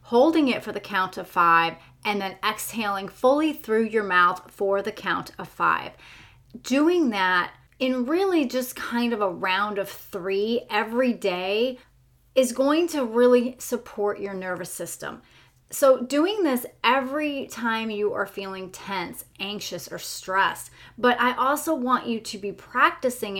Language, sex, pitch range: English, female, 190-250 Hz